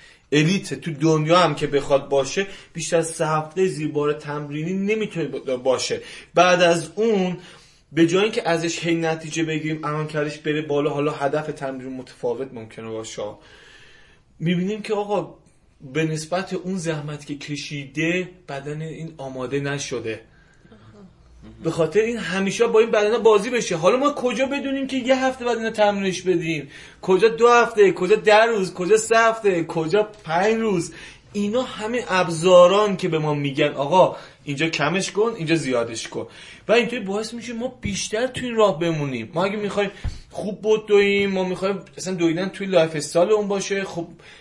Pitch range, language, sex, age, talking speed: 150-200 Hz, Persian, male, 30-49, 160 wpm